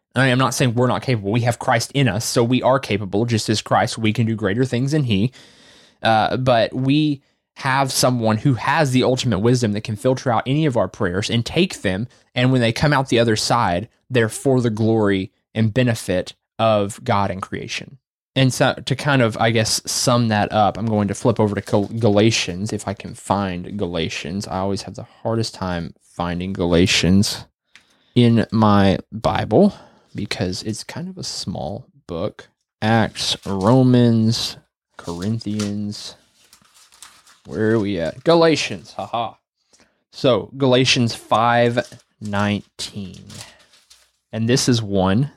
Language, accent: English, American